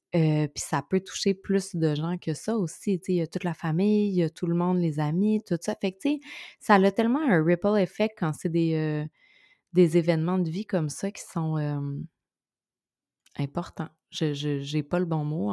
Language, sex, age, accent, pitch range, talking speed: French, female, 20-39, Canadian, 160-190 Hz, 210 wpm